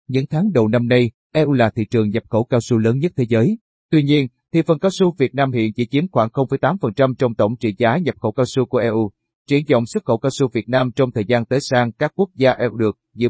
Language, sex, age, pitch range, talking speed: Vietnamese, male, 30-49, 115-140 Hz, 265 wpm